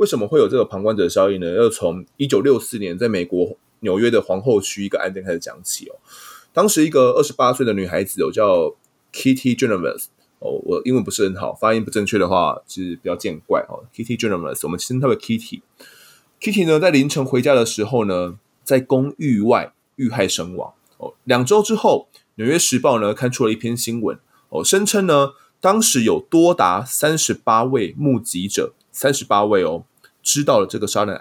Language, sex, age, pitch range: Chinese, male, 20-39, 110-175 Hz